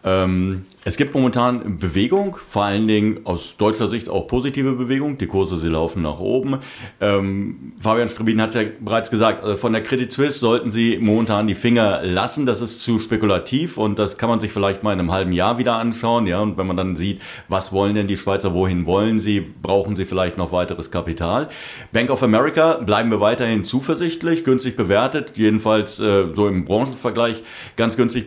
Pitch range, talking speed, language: 95-115 Hz, 195 wpm, German